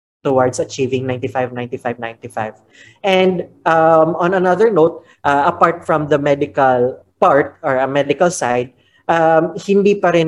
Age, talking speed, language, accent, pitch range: 20-39, 135 wpm, English, Filipino, 130-165 Hz